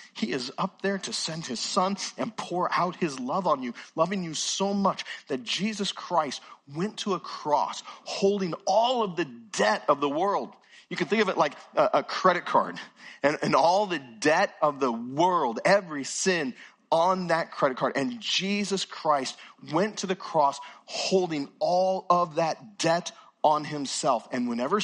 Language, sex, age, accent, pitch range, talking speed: English, male, 40-59, American, 130-195 Hz, 175 wpm